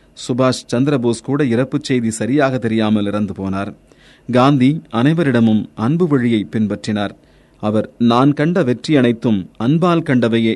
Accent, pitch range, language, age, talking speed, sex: native, 110-145 Hz, Tamil, 30-49, 120 wpm, male